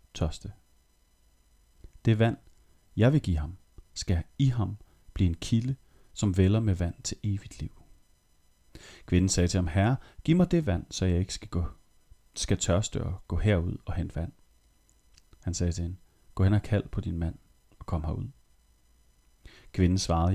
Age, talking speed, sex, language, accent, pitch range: 30-49, 170 wpm, male, Danish, native, 85-120 Hz